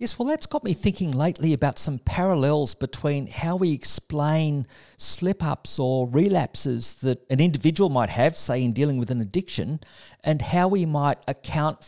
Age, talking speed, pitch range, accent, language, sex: 50-69, 165 wpm, 130-185 Hz, Australian, English, male